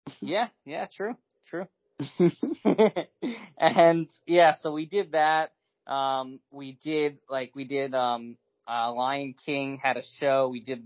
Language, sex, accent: English, male, American